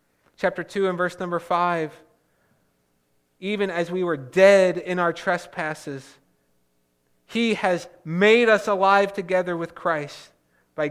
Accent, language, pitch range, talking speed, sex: American, English, 145-180 Hz, 125 wpm, male